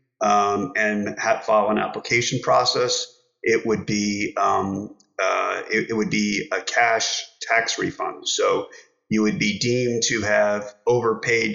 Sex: male